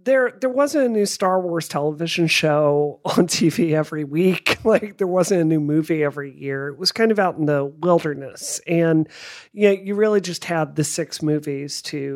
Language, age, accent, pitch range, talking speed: English, 40-59, American, 150-205 Hz, 200 wpm